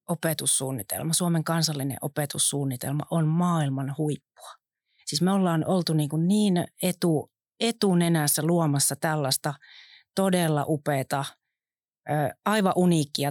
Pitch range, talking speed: 145-180 Hz, 100 wpm